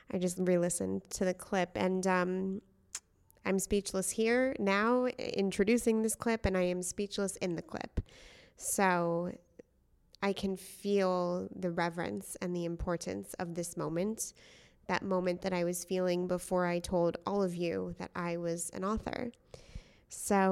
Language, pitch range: English, 180-210 Hz